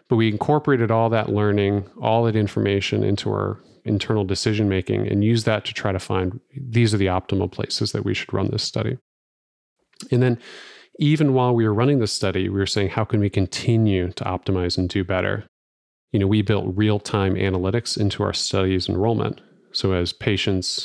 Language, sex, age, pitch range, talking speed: English, male, 30-49, 95-115 Hz, 195 wpm